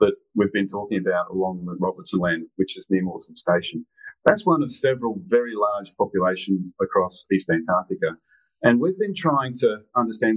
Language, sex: English, male